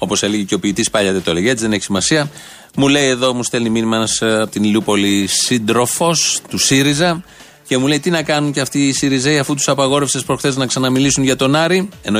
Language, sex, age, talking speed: Greek, male, 30-49, 220 wpm